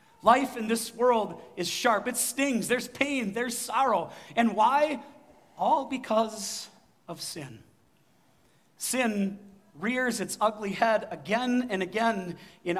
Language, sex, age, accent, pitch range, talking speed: English, male, 40-59, American, 175-240 Hz, 125 wpm